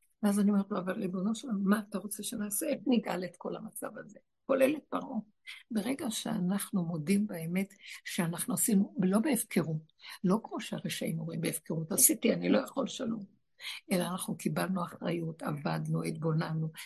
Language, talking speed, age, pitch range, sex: Hebrew, 155 wpm, 60-79, 190-245 Hz, female